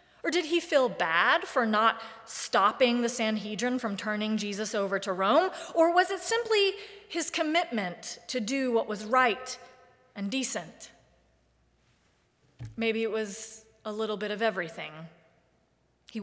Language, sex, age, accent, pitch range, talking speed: English, female, 30-49, American, 195-245 Hz, 140 wpm